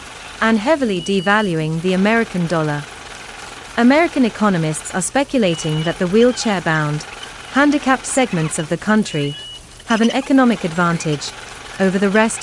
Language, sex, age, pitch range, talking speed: English, female, 30-49, 160-250 Hz, 125 wpm